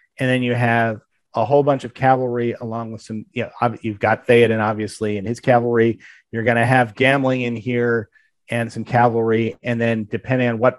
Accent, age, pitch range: American, 40-59, 110-130 Hz